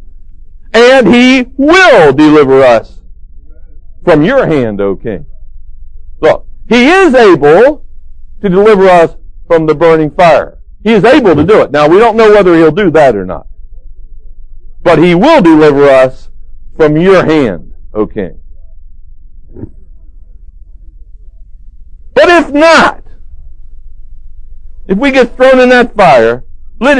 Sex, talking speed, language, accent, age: male, 130 wpm, English, American, 60-79